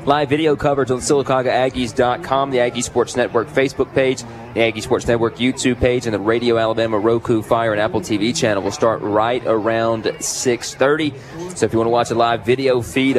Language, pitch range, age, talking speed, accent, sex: English, 115-140 Hz, 20-39, 190 wpm, American, male